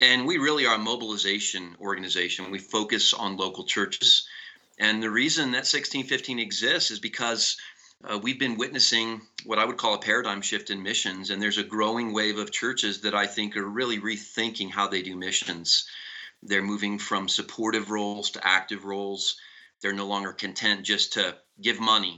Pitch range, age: 100-110 Hz, 40-59